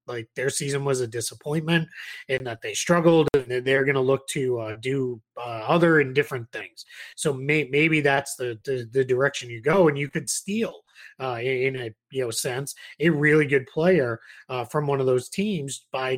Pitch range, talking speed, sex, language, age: 130-175 Hz, 200 wpm, male, English, 30-49